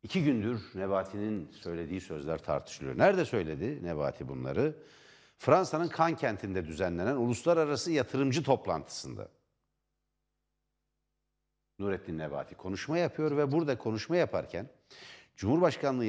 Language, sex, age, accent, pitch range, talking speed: Turkish, male, 60-79, native, 100-140 Hz, 95 wpm